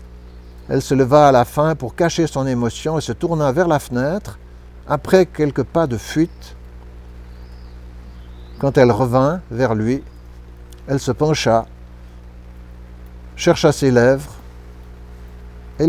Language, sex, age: French, male, 60-79